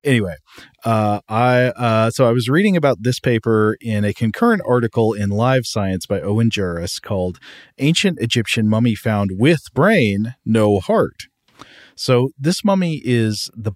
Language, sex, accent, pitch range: English, male, American, 100-130 Hz